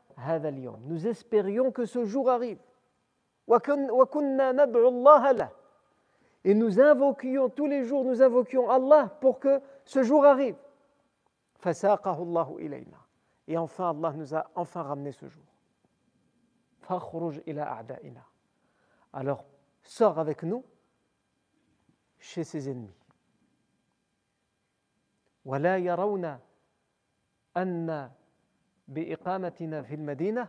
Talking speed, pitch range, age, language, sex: 75 wpm, 155-250 Hz, 50-69, French, male